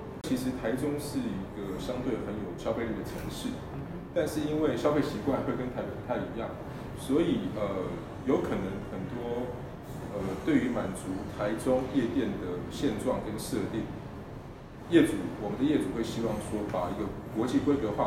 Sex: male